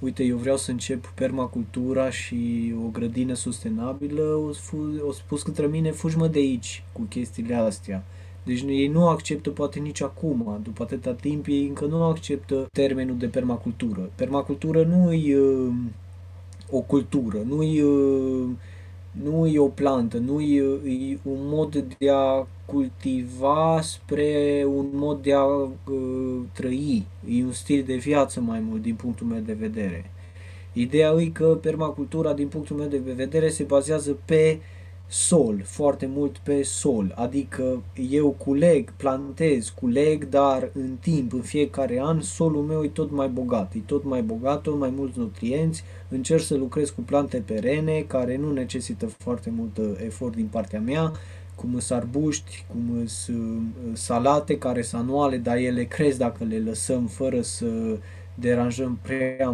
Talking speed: 150 wpm